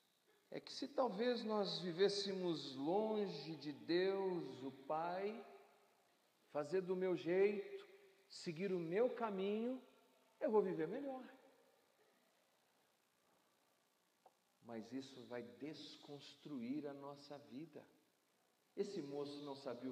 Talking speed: 100 wpm